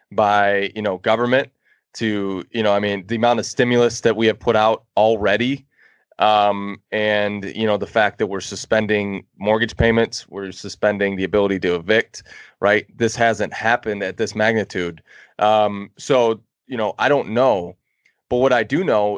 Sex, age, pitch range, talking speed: male, 20-39, 100-120 Hz, 170 wpm